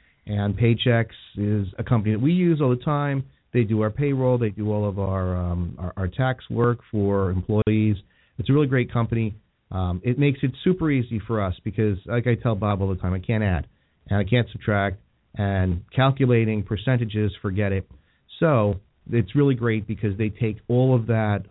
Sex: male